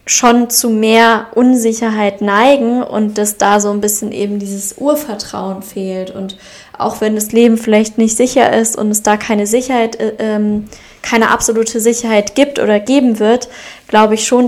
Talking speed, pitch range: 165 wpm, 205-230 Hz